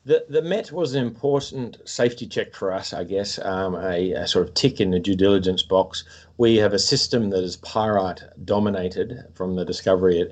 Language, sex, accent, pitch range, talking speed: English, male, Australian, 90-110 Hz, 205 wpm